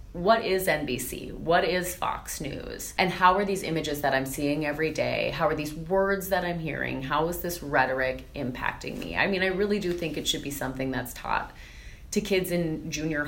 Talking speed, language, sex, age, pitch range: 210 wpm, English, female, 30-49, 145-190 Hz